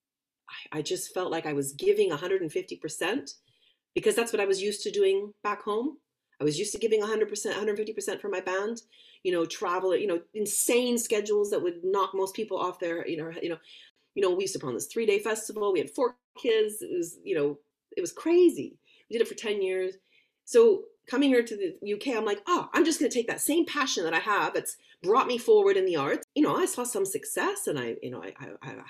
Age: 40-59